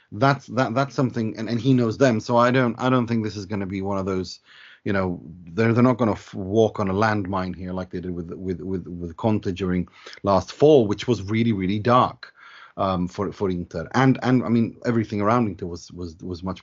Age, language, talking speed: 30-49, English, 240 wpm